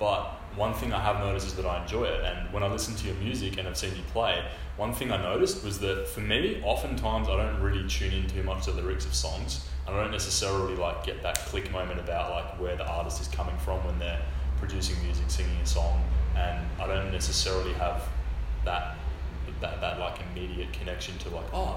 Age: 20-39